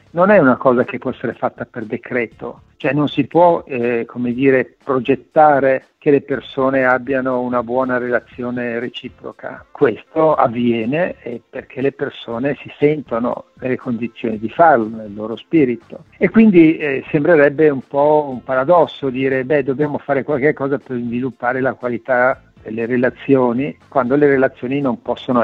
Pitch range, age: 120-145 Hz, 50-69